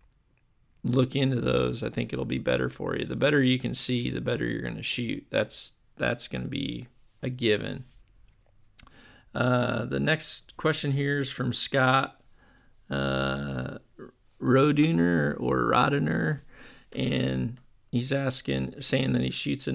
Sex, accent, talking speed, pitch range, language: male, American, 145 wpm, 110-130 Hz, English